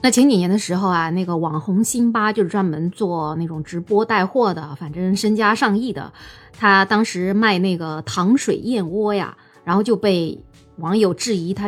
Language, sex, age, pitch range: Chinese, female, 20-39, 170-215 Hz